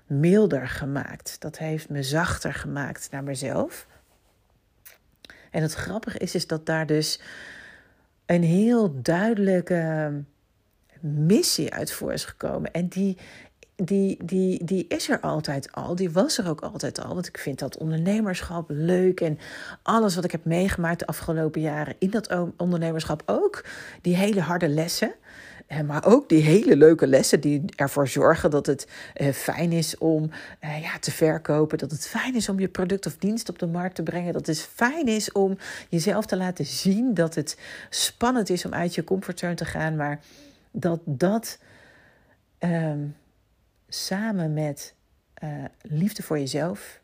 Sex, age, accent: female, 40-59, Dutch